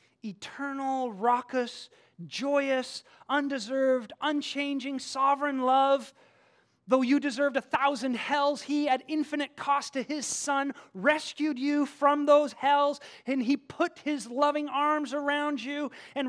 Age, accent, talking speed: 30-49, American, 125 wpm